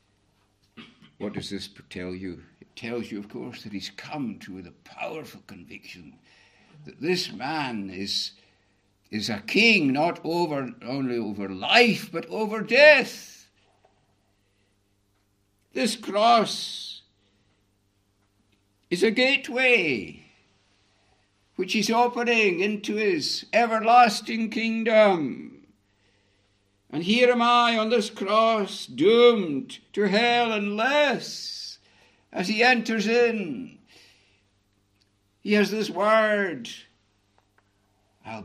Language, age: English, 60-79